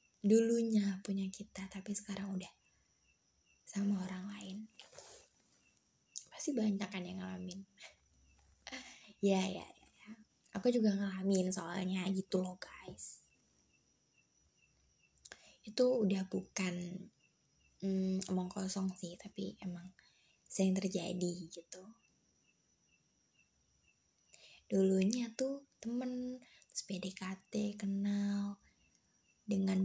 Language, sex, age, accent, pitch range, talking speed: Indonesian, female, 20-39, native, 185-210 Hz, 85 wpm